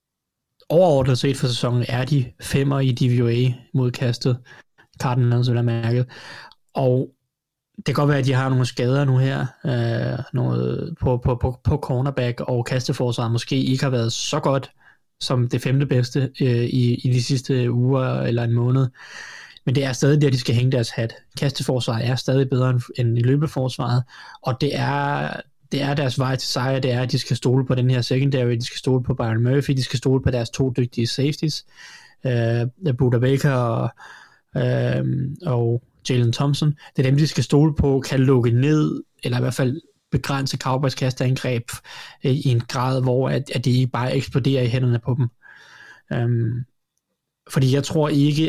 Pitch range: 125-140 Hz